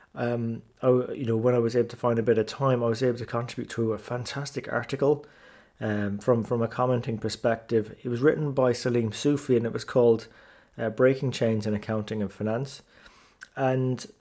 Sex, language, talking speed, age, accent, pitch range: male, English, 200 wpm, 20-39, British, 110-130 Hz